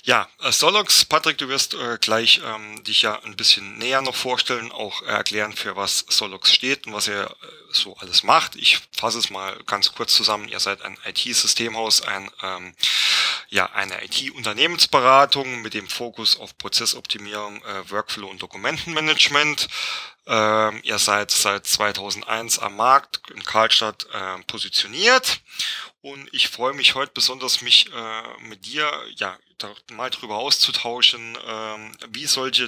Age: 30-49